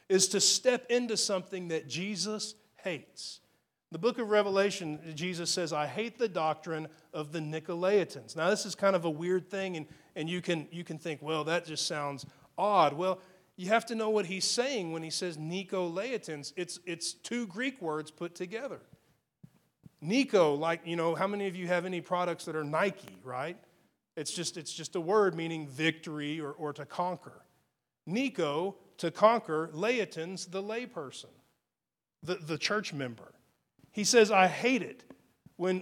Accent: American